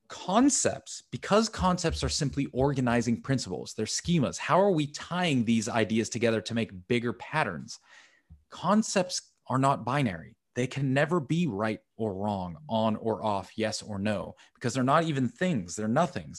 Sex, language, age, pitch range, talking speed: male, English, 30-49, 110-145 Hz, 160 wpm